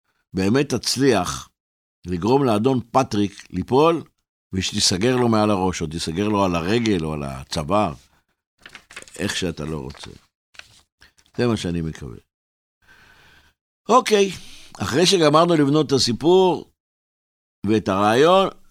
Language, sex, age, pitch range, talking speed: Hebrew, male, 60-79, 95-125 Hz, 110 wpm